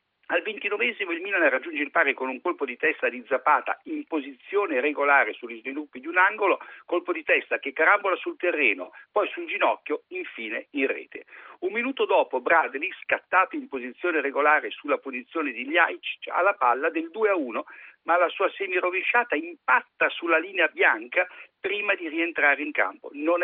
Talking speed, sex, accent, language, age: 170 wpm, male, native, Italian, 60-79